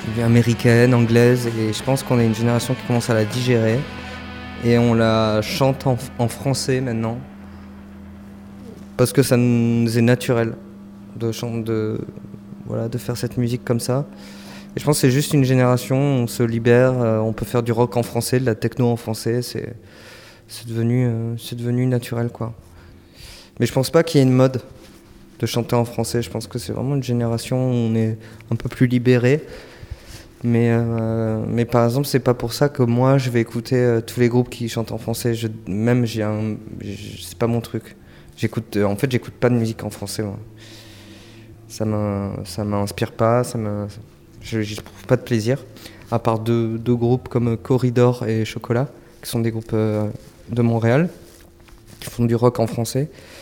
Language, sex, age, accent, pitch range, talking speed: French, male, 20-39, French, 110-120 Hz, 195 wpm